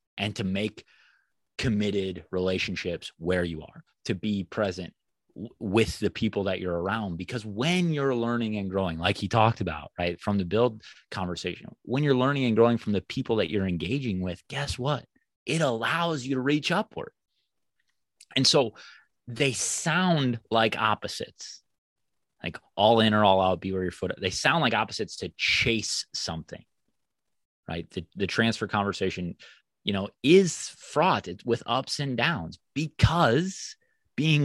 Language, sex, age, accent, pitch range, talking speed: English, male, 30-49, American, 95-130 Hz, 160 wpm